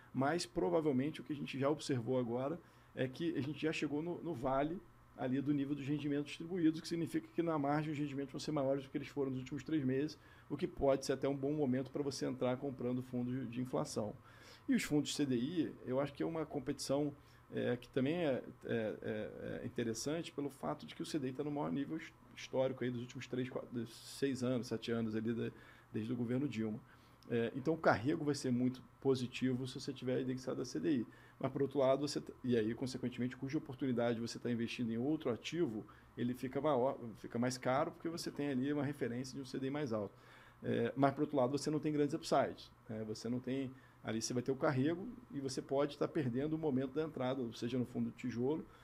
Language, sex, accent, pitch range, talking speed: Portuguese, male, Brazilian, 125-150 Hz, 225 wpm